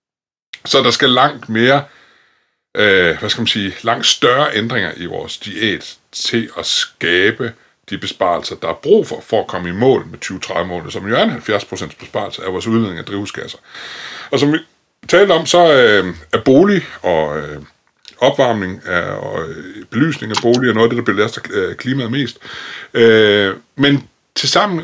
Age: 60-79